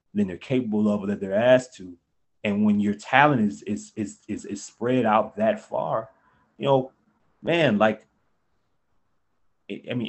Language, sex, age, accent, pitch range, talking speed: English, male, 20-39, American, 115-155 Hz, 160 wpm